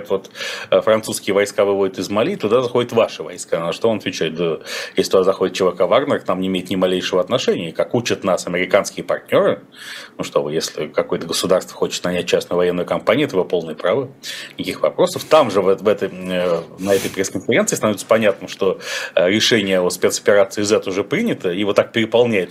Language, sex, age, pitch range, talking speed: Russian, male, 30-49, 95-125 Hz, 185 wpm